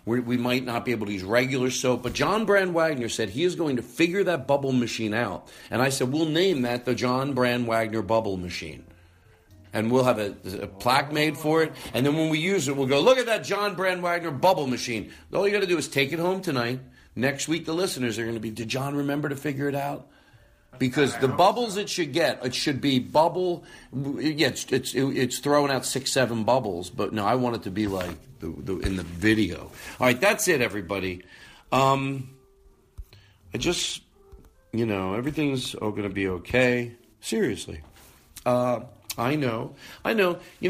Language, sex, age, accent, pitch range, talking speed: English, male, 40-59, American, 100-140 Hz, 205 wpm